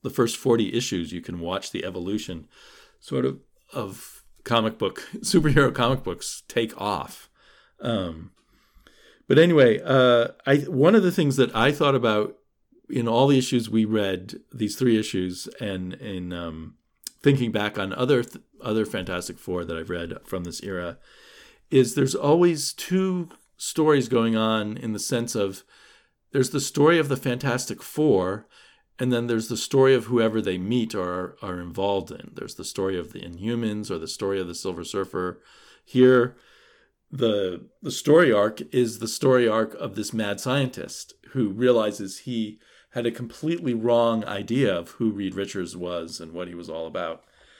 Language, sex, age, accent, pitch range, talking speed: English, male, 50-69, American, 95-125 Hz, 170 wpm